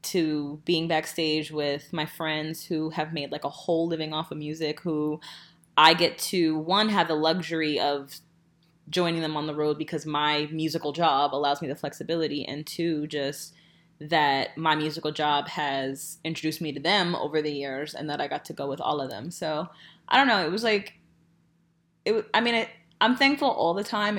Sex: female